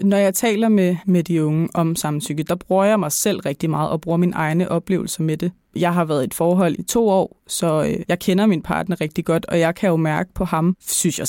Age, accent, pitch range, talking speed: 20-39, native, 165-200 Hz, 255 wpm